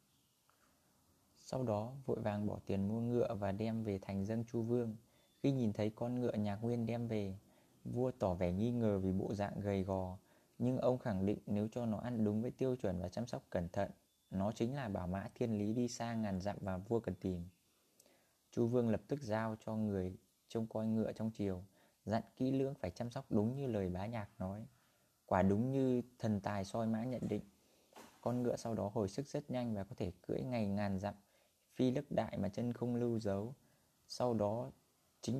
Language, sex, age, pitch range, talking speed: Vietnamese, male, 20-39, 100-120 Hz, 210 wpm